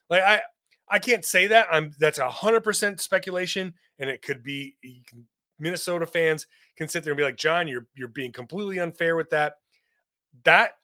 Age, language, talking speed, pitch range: 30-49, English, 195 wpm, 150-215 Hz